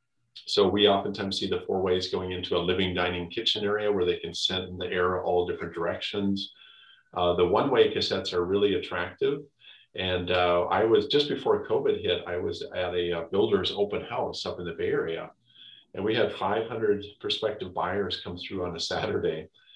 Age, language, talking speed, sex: 40-59, English, 195 wpm, male